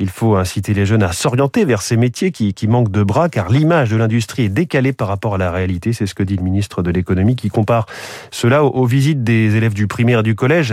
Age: 30-49